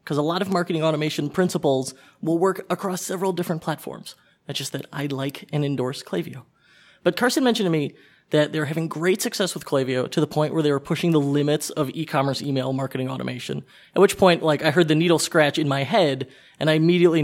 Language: English